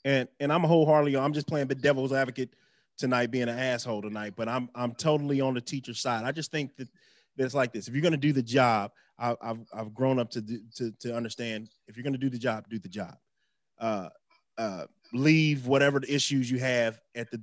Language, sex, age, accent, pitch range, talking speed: English, male, 20-39, American, 120-145 Hz, 240 wpm